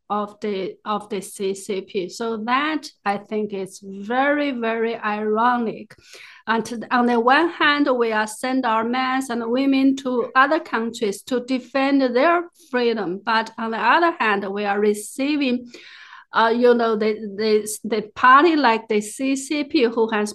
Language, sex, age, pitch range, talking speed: English, female, 50-69, 215-260 Hz, 155 wpm